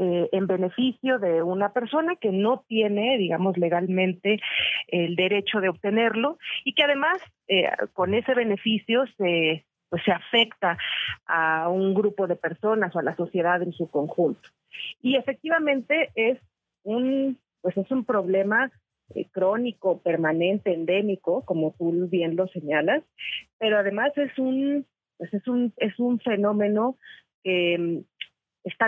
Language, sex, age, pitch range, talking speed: Spanish, female, 40-59, 185-240 Hz, 140 wpm